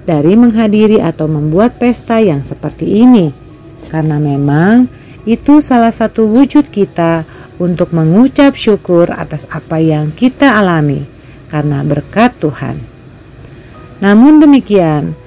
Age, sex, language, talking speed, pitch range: 40-59, female, Indonesian, 110 wpm, 150-220 Hz